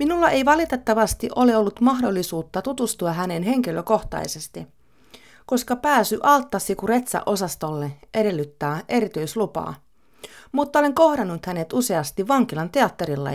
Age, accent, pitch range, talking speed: 30-49, native, 150-235 Hz, 100 wpm